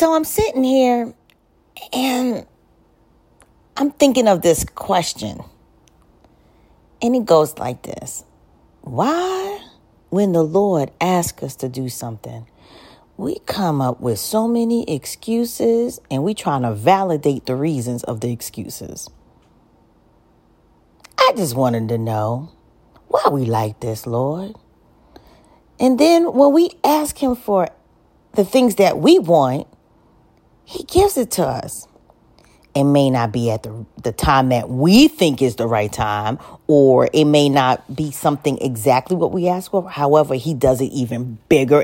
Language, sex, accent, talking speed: English, female, American, 145 wpm